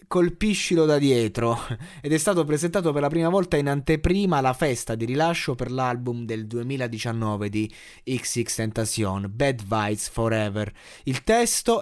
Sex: male